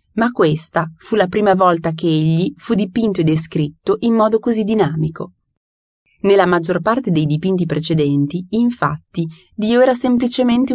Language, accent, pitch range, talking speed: Italian, native, 155-230 Hz, 145 wpm